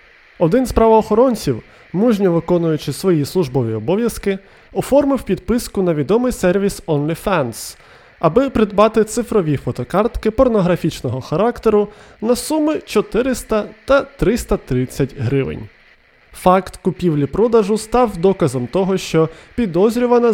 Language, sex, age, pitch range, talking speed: Ukrainian, male, 20-39, 150-225 Hz, 95 wpm